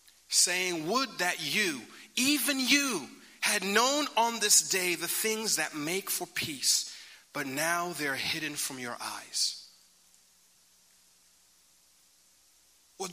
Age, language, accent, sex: 40-59, English, American, male